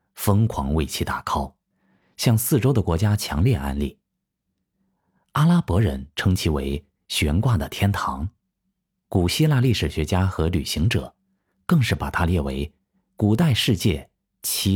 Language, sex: Chinese, male